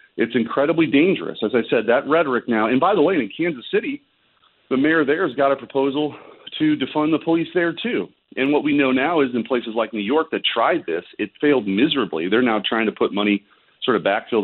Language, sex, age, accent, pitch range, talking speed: English, male, 40-59, American, 100-130 Hz, 230 wpm